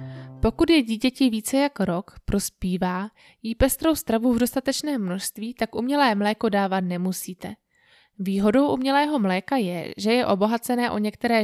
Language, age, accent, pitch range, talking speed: Czech, 20-39, native, 195-250 Hz, 140 wpm